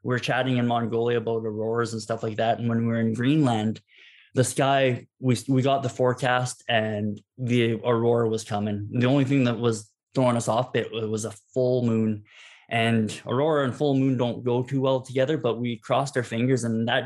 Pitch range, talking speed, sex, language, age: 110-130 Hz, 210 wpm, male, English, 20-39